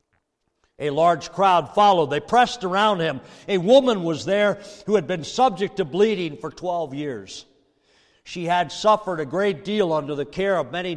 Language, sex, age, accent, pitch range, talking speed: English, male, 60-79, American, 150-210 Hz, 175 wpm